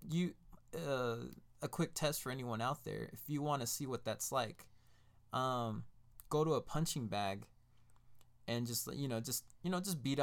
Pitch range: 115-135 Hz